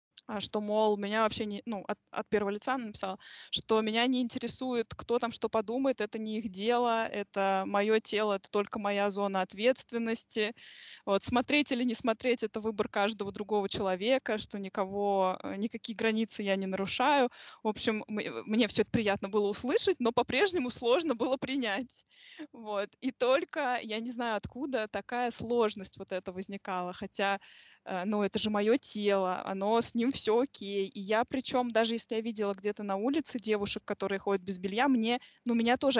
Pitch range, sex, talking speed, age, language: 205-250 Hz, female, 175 wpm, 20-39, Russian